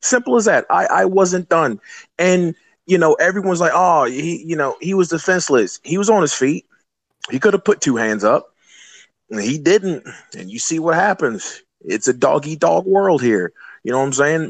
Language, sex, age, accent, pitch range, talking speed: English, male, 30-49, American, 150-210 Hz, 205 wpm